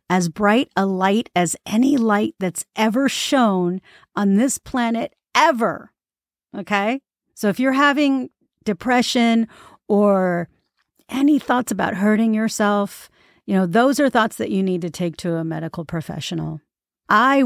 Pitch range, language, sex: 175-225 Hz, English, female